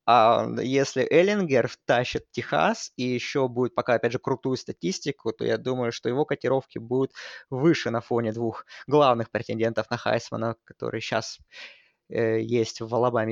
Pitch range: 125-150 Hz